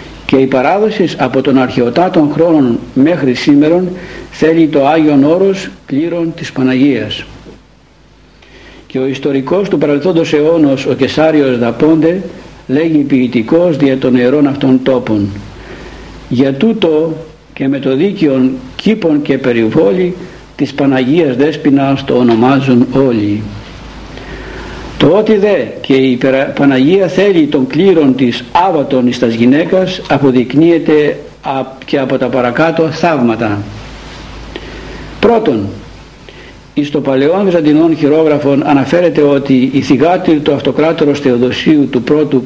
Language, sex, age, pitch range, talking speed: Greek, male, 60-79, 130-160 Hz, 115 wpm